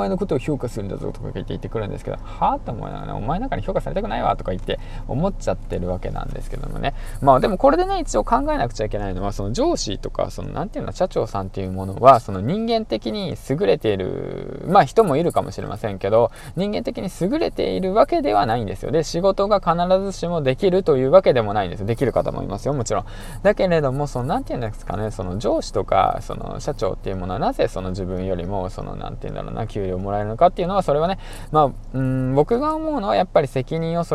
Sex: male